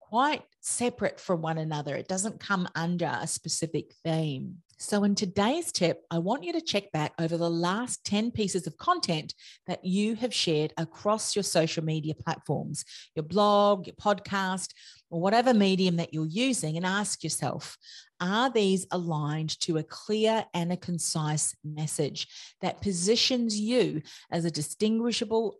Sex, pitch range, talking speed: female, 160-205 Hz, 155 wpm